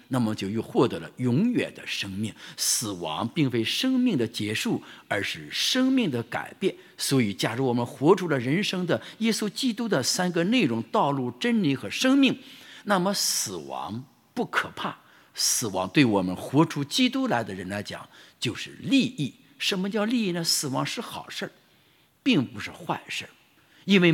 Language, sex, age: English, male, 50-69